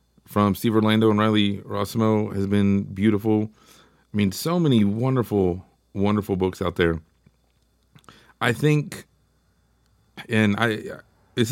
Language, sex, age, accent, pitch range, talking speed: English, male, 30-49, American, 95-115 Hz, 120 wpm